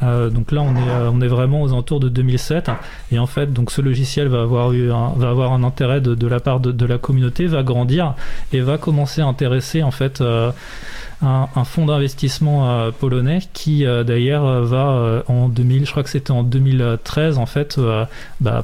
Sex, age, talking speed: male, 20-39, 220 wpm